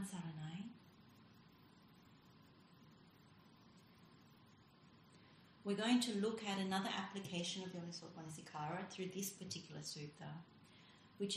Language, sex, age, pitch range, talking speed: English, female, 30-49, 165-205 Hz, 85 wpm